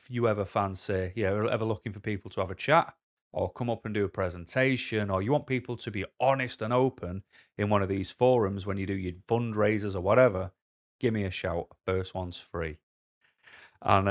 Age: 30-49